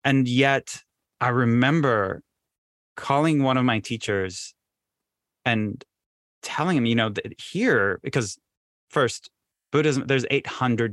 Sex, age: male, 30-49